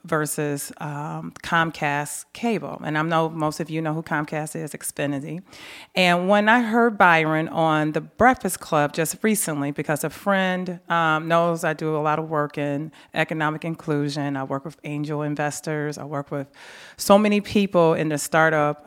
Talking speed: 170 wpm